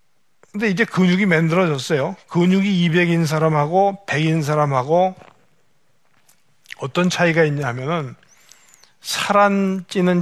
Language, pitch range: Korean, 155-190 Hz